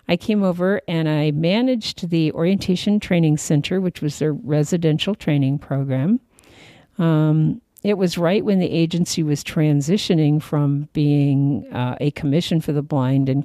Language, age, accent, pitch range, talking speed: English, 50-69, American, 135-175 Hz, 150 wpm